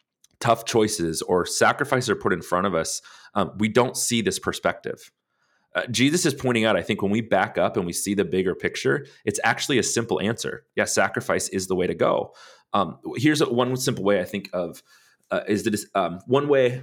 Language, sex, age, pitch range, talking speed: English, male, 30-49, 95-115 Hz, 205 wpm